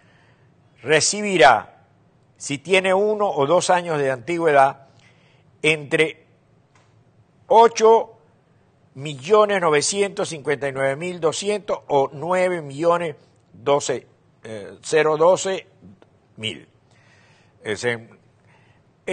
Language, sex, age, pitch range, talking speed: Spanish, male, 60-79, 115-150 Hz, 40 wpm